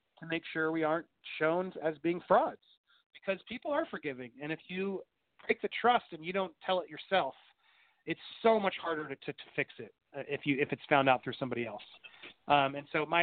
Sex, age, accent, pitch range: male, 30-49, American, 145-190 Hz